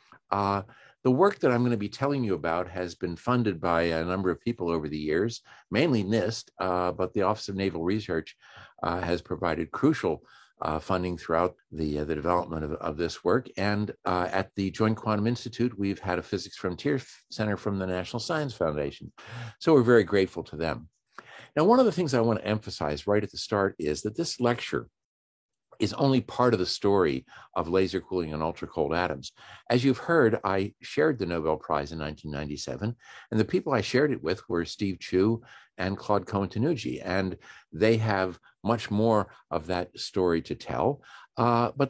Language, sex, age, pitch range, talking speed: English, male, 50-69, 90-120 Hz, 195 wpm